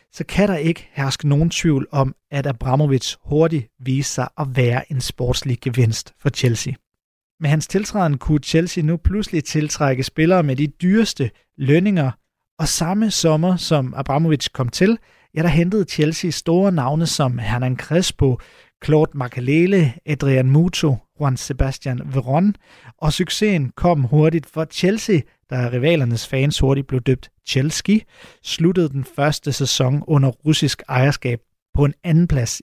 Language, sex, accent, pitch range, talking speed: Danish, male, native, 130-165 Hz, 150 wpm